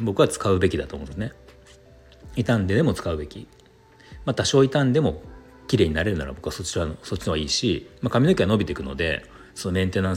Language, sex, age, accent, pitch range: Japanese, male, 40-59, native, 75-115 Hz